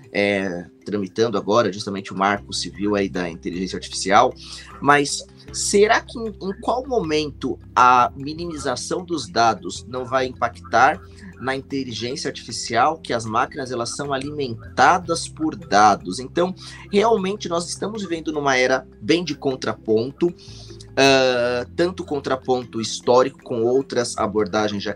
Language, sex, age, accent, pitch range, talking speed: Portuguese, male, 20-39, Brazilian, 110-150 Hz, 125 wpm